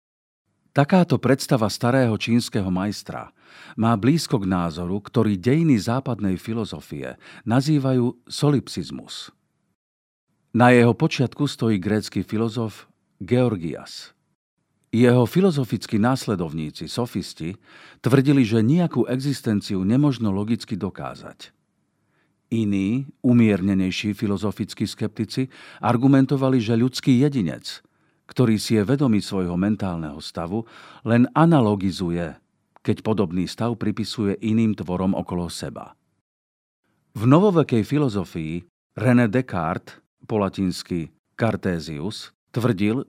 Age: 50-69